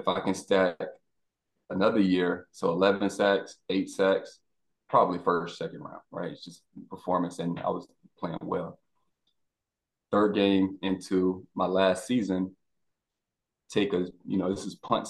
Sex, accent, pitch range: male, American, 95-105 Hz